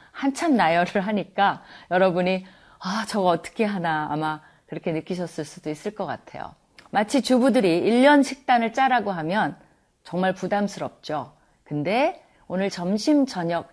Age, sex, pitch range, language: 40-59, female, 155-230 Hz, Korean